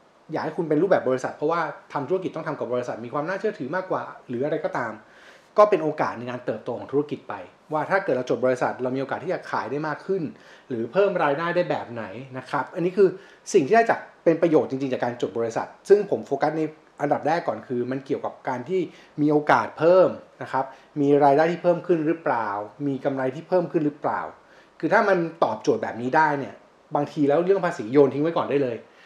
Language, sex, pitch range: Thai, male, 130-175 Hz